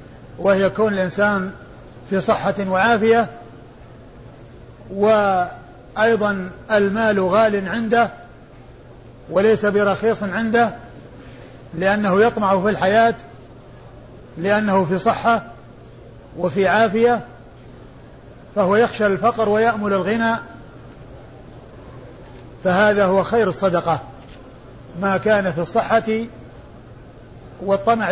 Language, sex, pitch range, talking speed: Arabic, male, 135-215 Hz, 75 wpm